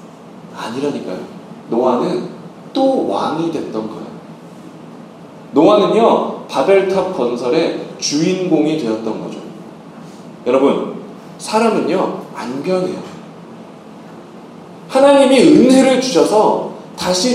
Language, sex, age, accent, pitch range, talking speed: English, male, 30-49, Korean, 170-265 Hz, 70 wpm